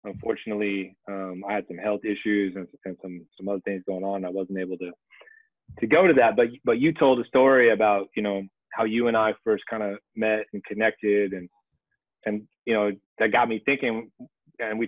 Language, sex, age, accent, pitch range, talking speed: English, male, 30-49, American, 100-125 Hz, 210 wpm